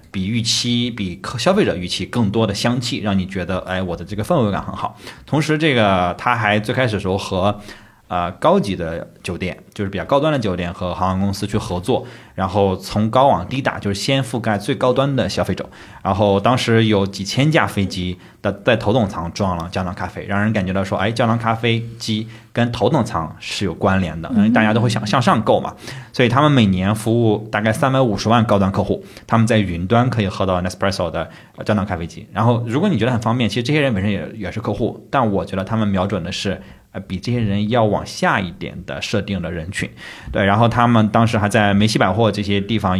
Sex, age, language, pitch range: male, 20-39, Chinese, 95-115 Hz